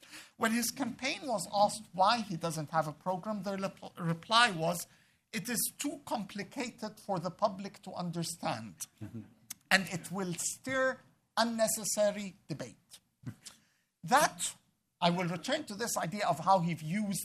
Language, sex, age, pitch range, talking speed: English, male, 50-69, 170-230 Hz, 145 wpm